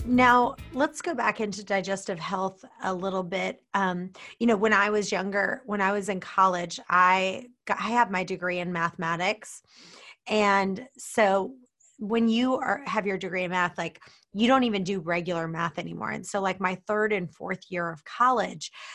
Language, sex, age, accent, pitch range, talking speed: English, female, 30-49, American, 180-215 Hz, 185 wpm